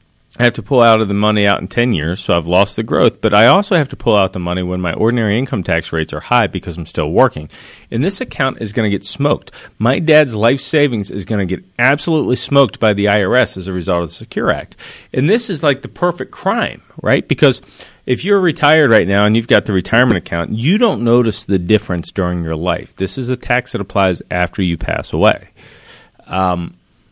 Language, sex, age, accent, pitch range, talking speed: English, male, 40-59, American, 95-125 Hz, 230 wpm